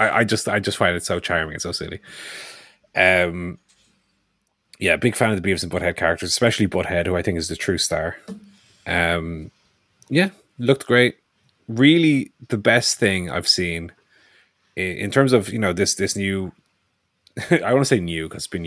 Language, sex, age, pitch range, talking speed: English, male, 30-49, 85-110 Hz, 185 wpm